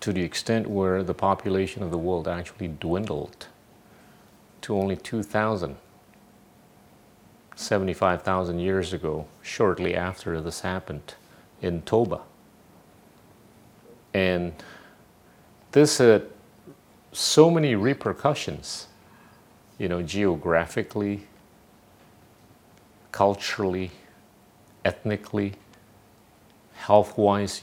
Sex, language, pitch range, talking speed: male, Indonesian, 90-115 Hz, 80 wpm